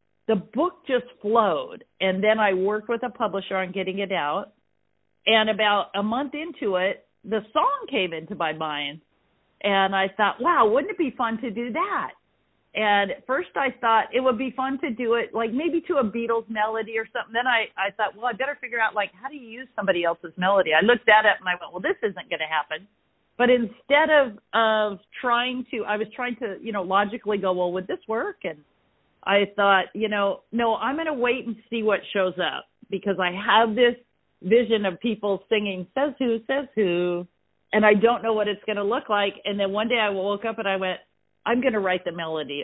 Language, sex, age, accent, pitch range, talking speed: English, female, 50-69, American, 190-240 Hz, 220 wpm